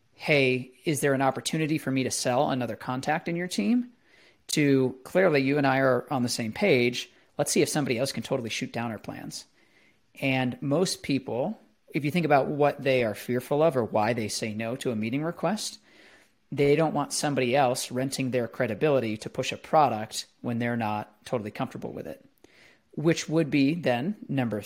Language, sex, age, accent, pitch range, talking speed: English, male, 40-59, American, 125-150 Hz, 195 wpm